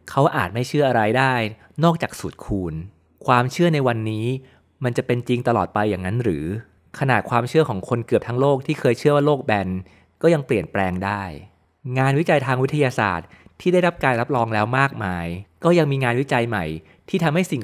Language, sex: Thai, male